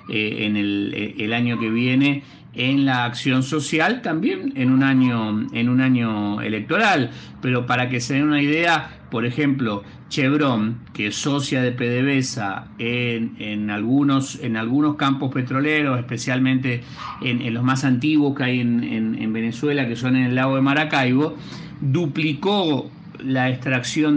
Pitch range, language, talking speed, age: 115-145 Hz, Spanish, 155 wpm, 50-69